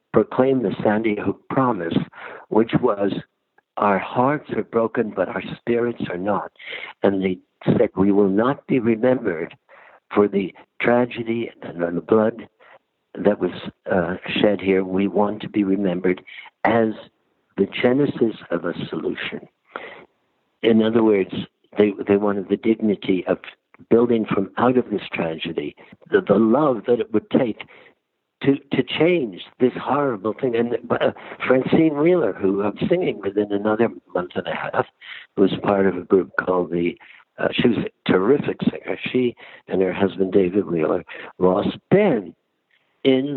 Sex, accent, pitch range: male, American, 100-120 Hz